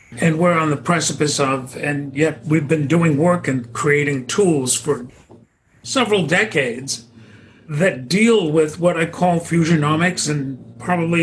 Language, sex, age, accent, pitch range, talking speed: English, male, 50-69, American, 140-180 Hz, 145 wpm